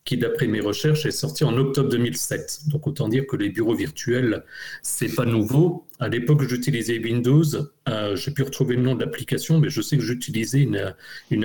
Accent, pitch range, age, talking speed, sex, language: French, 115-150 Hz, 40-59, 205 wpm, male, French